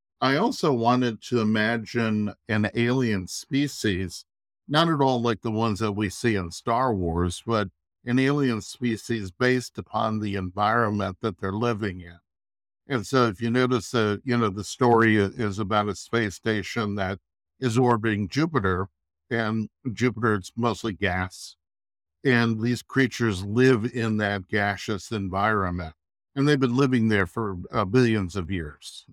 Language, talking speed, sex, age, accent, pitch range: English, 150 wpm, male, 60-79, American, 95-120 Hz